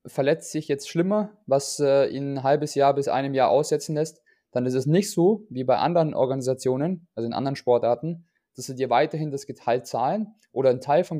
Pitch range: 125-150 Hz